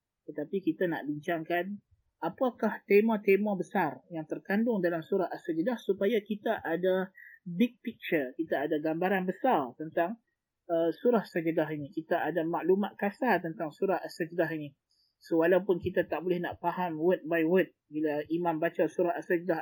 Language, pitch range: Malay, 160-195 Hz